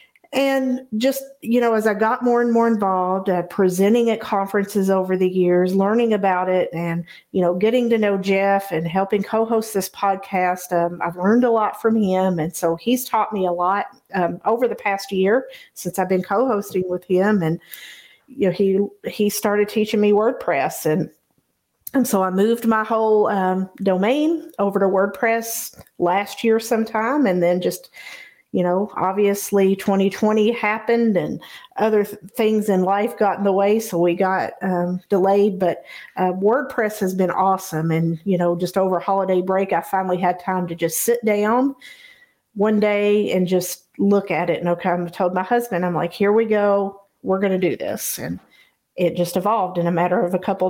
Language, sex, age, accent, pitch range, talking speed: English, female, 50-69, American, 185-220 Hz, 190 wpm